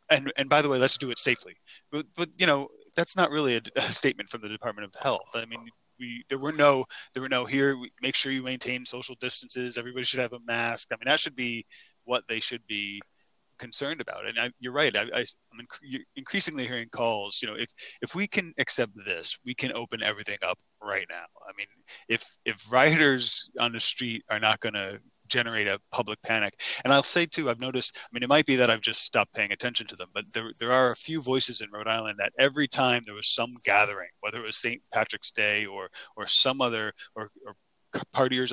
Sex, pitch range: male, 115-135 Hz